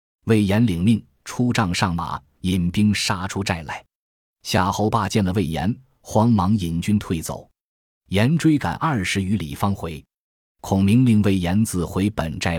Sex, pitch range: male, 85-115 Hz